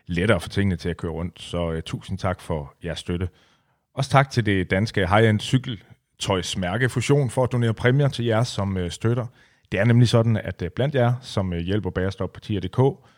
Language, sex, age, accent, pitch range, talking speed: Danish, male, 30-49, native, 95-120 Hz, 180 wpm